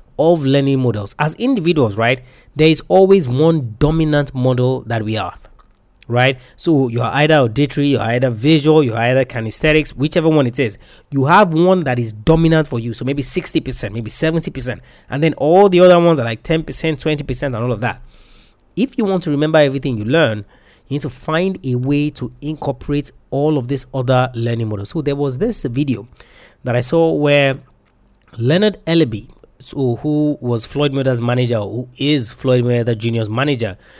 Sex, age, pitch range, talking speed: male, 30-49, 120-160 Hz, 180 wpm